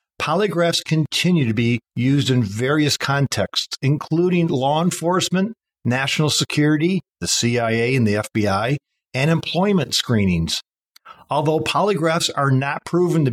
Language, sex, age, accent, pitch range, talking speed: English, male, 50-69, American, 125-165 Hz, 120 wpm